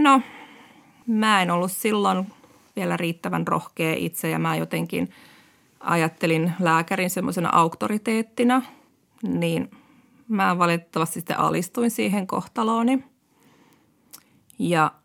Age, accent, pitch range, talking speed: 20-39, native, 170-255 Hz, 95 wpm